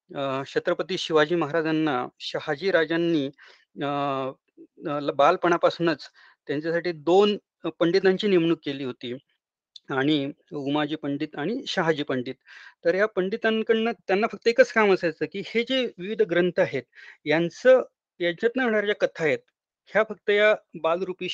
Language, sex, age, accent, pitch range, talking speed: Marathi, male, 30-49, native, 150-195 Hz, 90 wpm